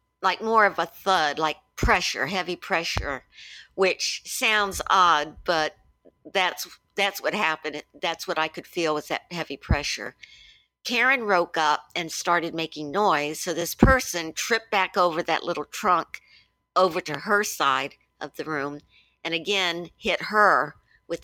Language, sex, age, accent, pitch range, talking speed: English, female, 50-69, American, 165-205 Hz, 155 wpm